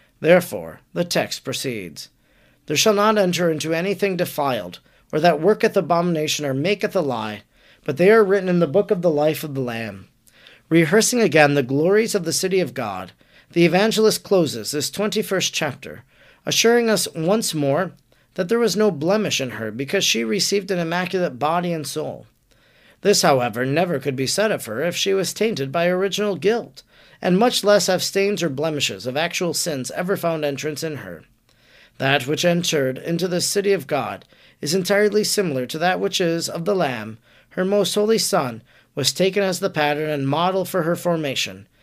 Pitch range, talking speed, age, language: 145-200 Hz, 185 wpm, 40-59, English